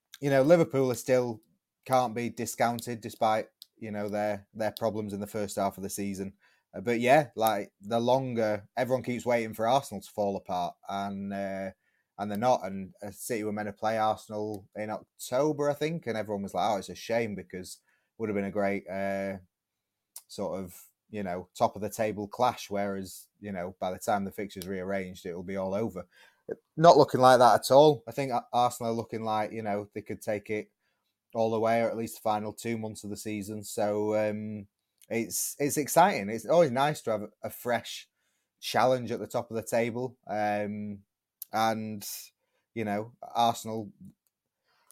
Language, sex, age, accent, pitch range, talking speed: English, male, 20-39, British, 105-120 Hz, 195 wpm